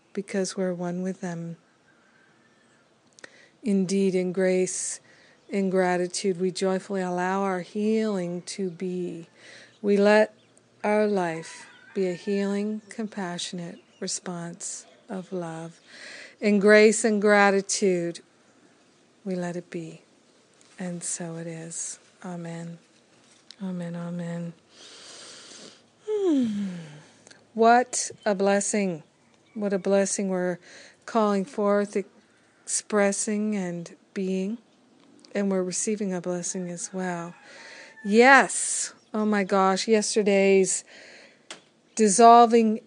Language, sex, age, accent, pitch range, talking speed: English, female, 50-69, American, 180-215 Hz, 95 wpm